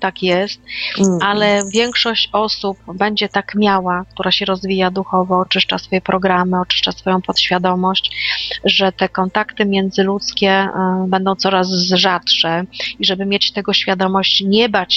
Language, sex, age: Polish, female, 30-49